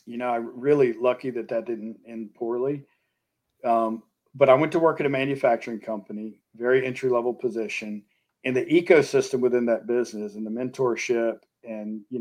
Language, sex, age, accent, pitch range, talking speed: English, male, 40-59, American, 115-150 Hz, 170 wpm